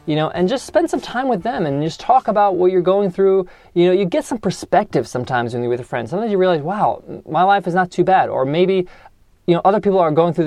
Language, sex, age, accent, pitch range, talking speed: English, male, 20-39, American, 155-195 Hz, 275 wpm